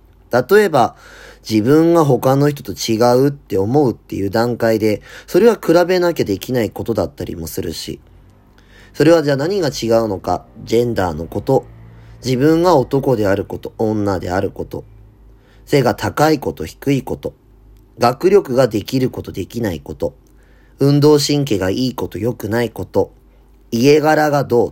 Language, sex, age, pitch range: Japanese, male, 30-49, 100-140 Hz